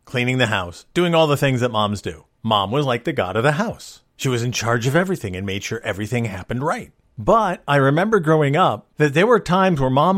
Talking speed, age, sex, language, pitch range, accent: 240 wpm, 40-59, male, English, 120-160 Hz, American